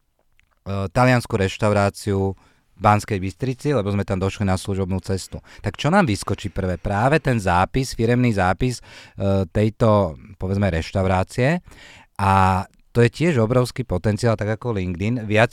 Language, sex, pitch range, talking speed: Slovak, male, 100-120 Hz, 135 wpm